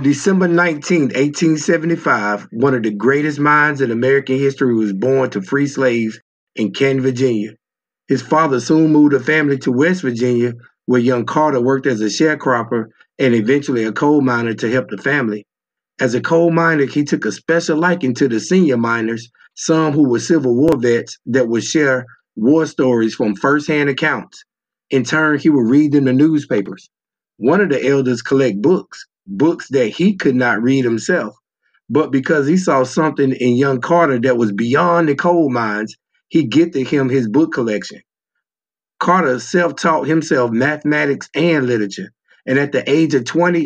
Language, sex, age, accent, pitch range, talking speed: English, male, 50-69, American, 120-155 Hz, 170 wpm